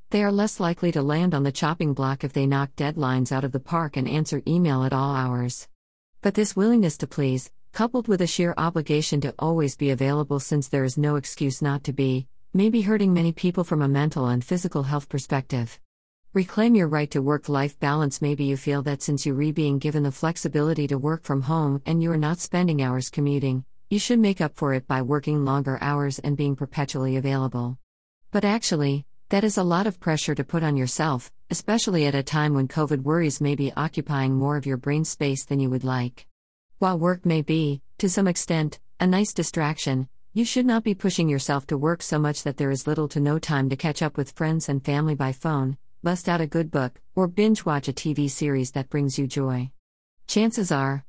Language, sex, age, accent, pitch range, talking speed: English, female, 50-69, American, 135-165 Hz, 215 wpm